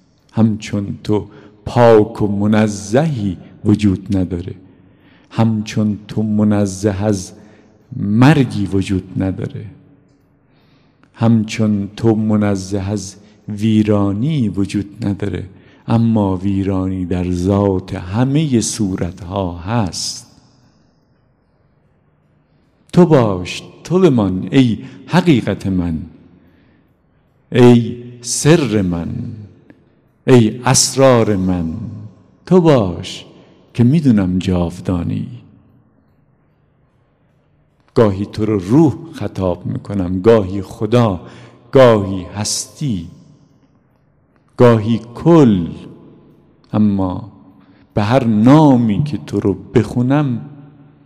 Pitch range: 100-135 Hz